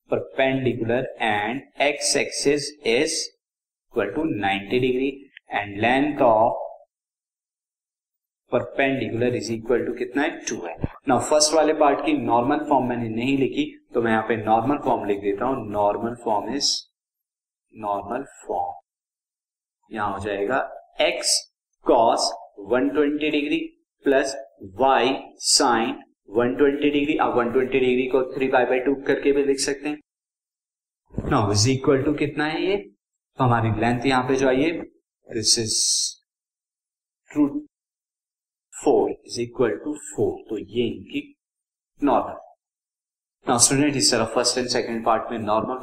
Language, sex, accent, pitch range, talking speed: Hindi, male, native, 120-150 Hz, 105 wpm